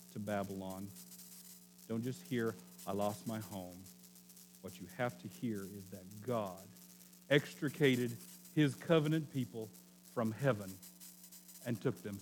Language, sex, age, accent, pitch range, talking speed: English, male, 50-69, American, 85-140 Hz, 130 wpm